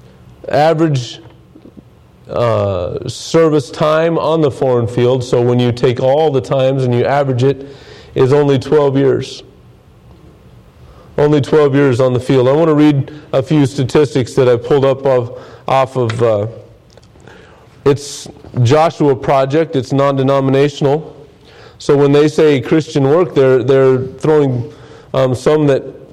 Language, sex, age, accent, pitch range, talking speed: English, male, 40-59, American, 120-150 Hz, 140 wpm